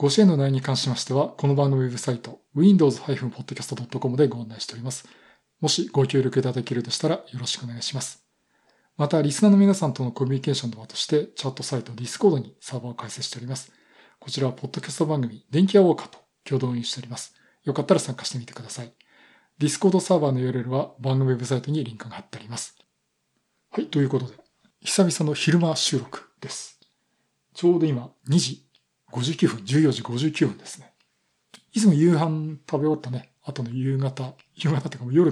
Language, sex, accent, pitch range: Japanese, male, native, 125-155 Hz